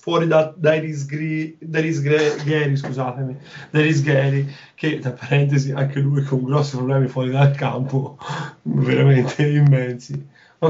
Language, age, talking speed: Italian, 20-39, 135 wpm